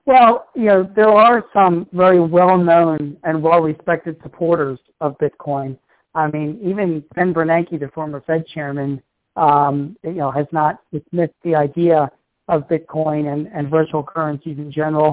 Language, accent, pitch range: English, American, 155-185 Hz